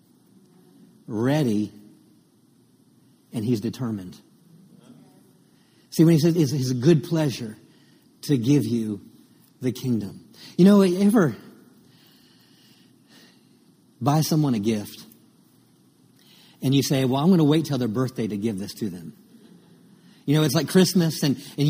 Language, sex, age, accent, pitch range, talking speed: English, male, 50-69, American, 140-180 Hz, 130 wpm